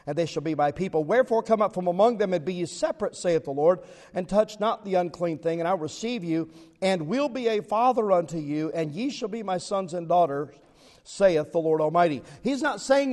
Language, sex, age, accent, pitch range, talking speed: English, male, 50-69, American, 175-230 Hz, 240 wpm